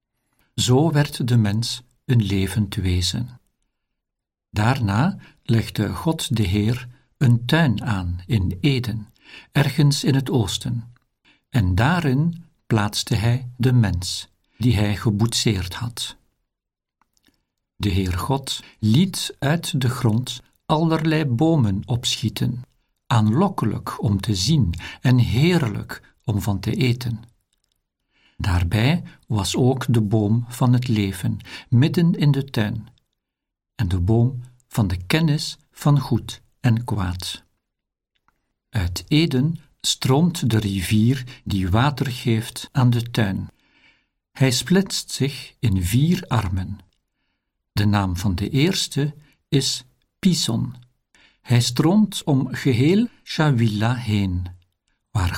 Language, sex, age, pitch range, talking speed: Dutch, male, 60-79, 105-135 Hz, 115 wpm